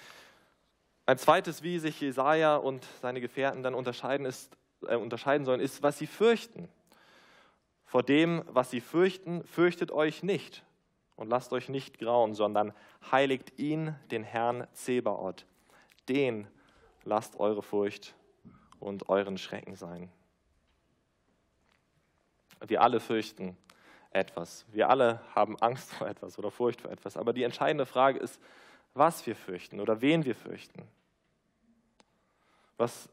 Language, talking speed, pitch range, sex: German, 130 wpm, 105-150 Hz, male